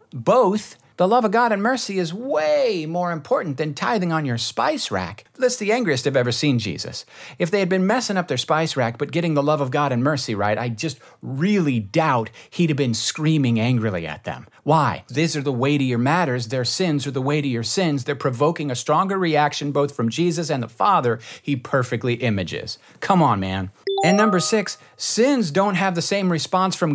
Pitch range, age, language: 125-190 Hz, 50-69, English